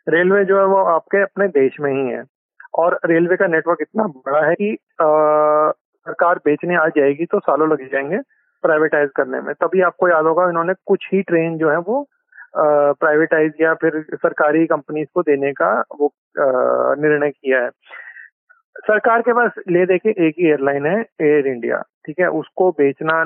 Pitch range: 150-200 Hz